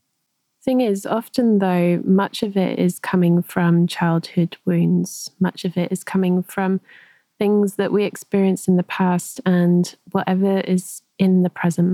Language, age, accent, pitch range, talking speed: English, 20-39, British, 180-205 Hz, 155 wpm